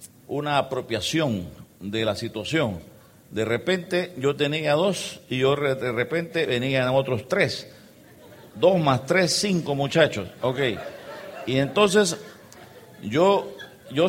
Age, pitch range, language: 50-69, 140-195 Hz, Spanish